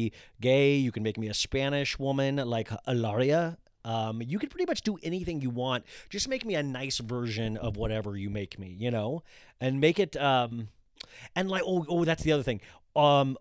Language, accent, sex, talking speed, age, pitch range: English, American, male, 200 wpm, 30-49, 110-140 Hz